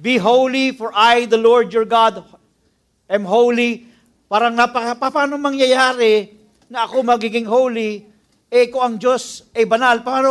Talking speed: 155 wpm